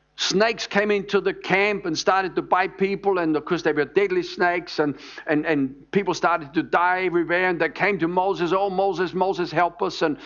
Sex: male